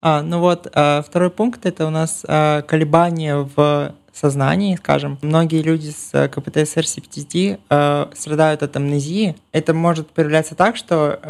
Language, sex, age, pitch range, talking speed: Russian, male, 20-39, 145-160 Hz, 140 wpm